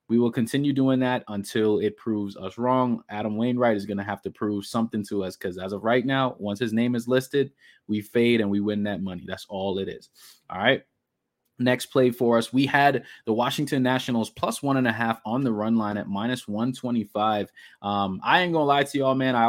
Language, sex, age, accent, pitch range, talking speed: English, male, 20-39, American, 105-125 Hz, 235 wpm